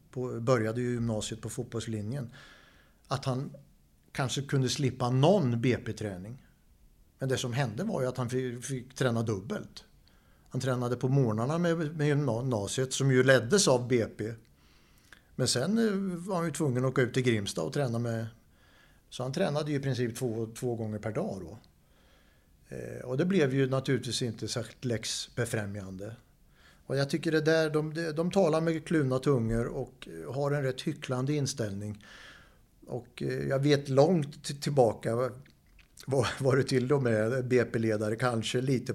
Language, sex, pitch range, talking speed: English, male, 110-135 Hz, 155 wpm